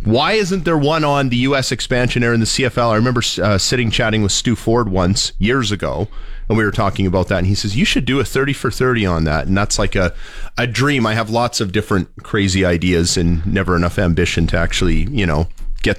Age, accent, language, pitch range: 30-49, American, English, 95-125 Hz